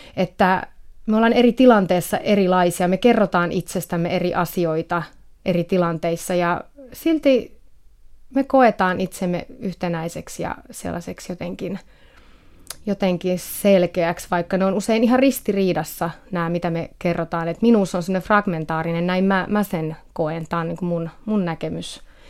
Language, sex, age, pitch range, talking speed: Finnish, female, 30-49, 175-200 Hz, 135 wpm